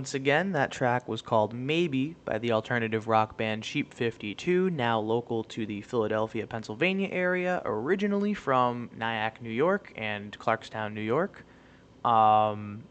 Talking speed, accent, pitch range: 145 wpm, American, 115-155 Hz